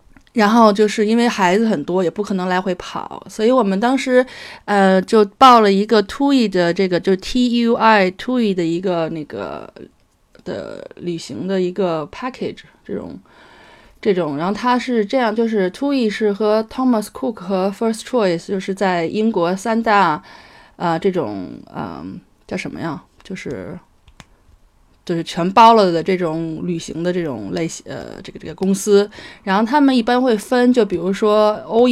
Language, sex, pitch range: Chinese, female, 175-225 Hz